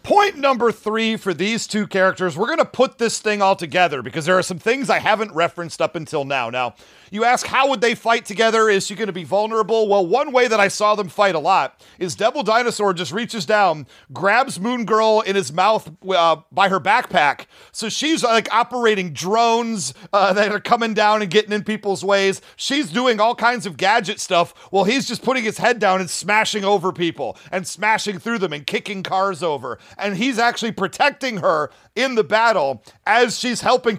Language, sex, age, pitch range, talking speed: English, male, 40-59, 185-230 Hz, 205 wpm